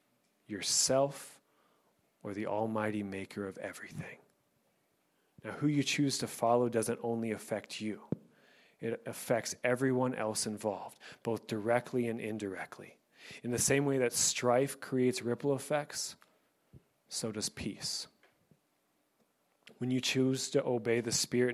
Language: English